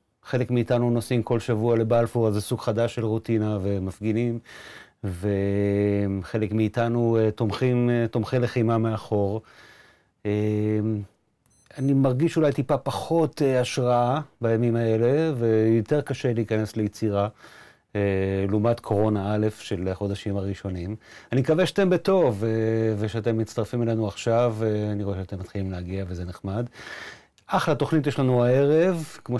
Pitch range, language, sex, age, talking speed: 105-130 Hz, Hebrew, male, 30-49, 115 wpm